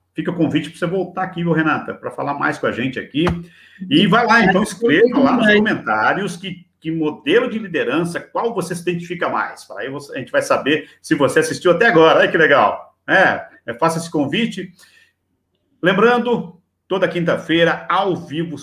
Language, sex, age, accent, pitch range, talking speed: Portuguese, male, 50-69, Brazilian, 125-180 Hz, 185 wpm